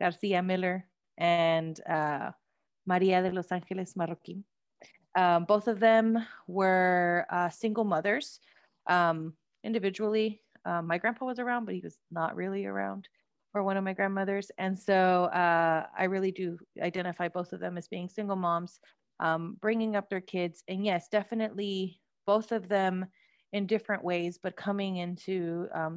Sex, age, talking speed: female, 30-49, 155 wpm